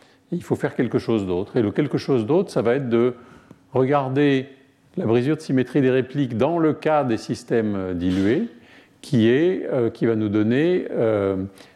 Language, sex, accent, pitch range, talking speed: French, male, French, 110-155 Hz, 185 wpm